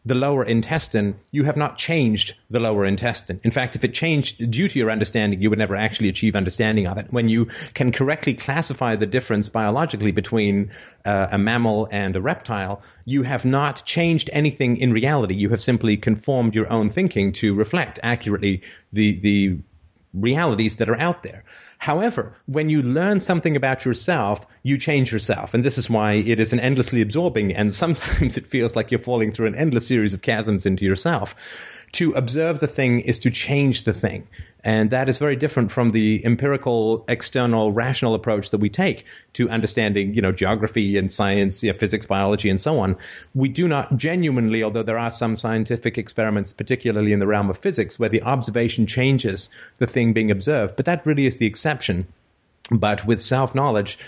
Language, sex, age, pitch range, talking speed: English, male, 30-49, 105-130 Hz, 190 wpm